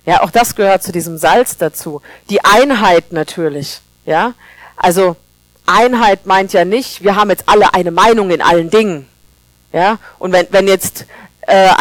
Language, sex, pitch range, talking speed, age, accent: German, female, 165-220 Hz, 165 wpm, 40-59, German